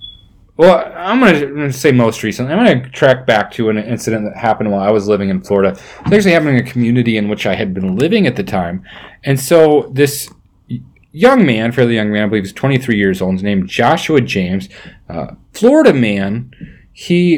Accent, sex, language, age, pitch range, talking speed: American, male, English, 30-49, 105-145 Hz, 215 wpm